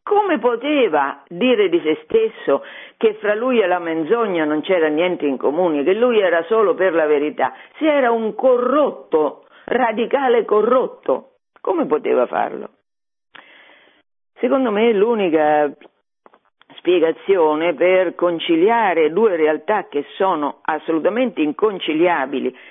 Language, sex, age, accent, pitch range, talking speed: Italian, female, 50-69, native, 155-255 Hz, 120 wpm